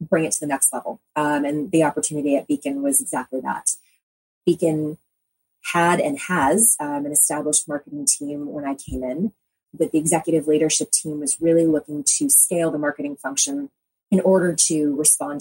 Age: 20-39